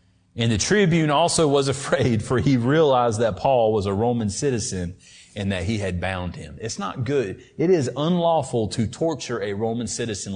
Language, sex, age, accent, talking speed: English, male, 40-59, American, 185 wpm